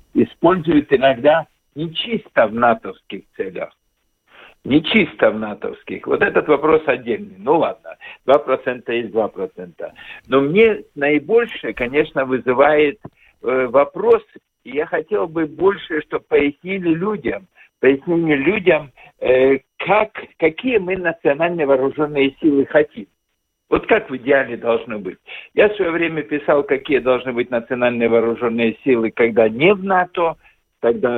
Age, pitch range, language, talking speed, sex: 60-79, 135-210 Hz, Russian, 125 wpm, male